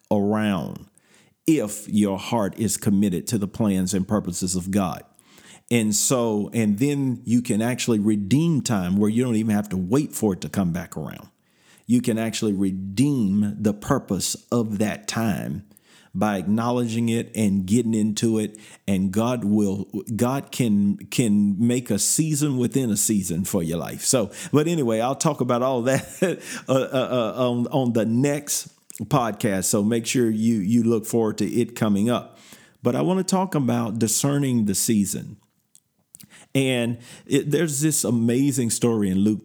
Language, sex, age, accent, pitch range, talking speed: English, male, 50-69, American, 100-120 Hz, 160 wpm